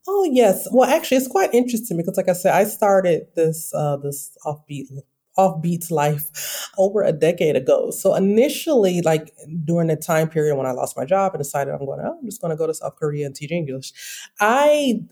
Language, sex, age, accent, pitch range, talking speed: English, female, 30-49, American, 140-185 Hz, 205 wpm